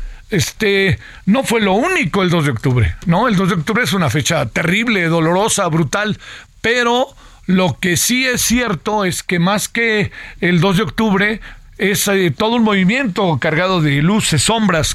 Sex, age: male, 50-69